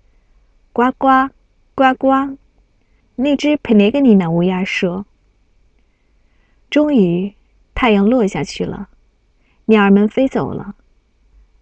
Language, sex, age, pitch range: Chinese, female, 20-39, 185-260 Hz